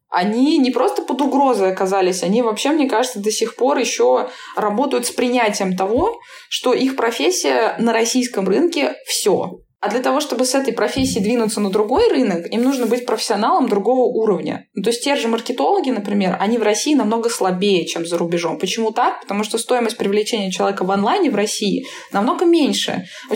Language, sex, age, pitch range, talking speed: Russian, female, 20-39, 195-255 Hz, 180 wpm